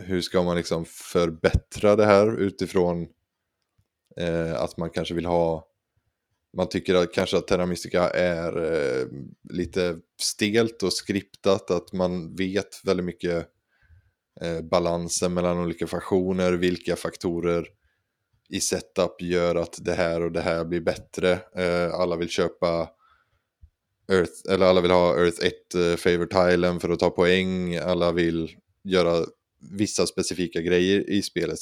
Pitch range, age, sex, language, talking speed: 85-95 Hz, 20-39, male, Swedish, 145 wpm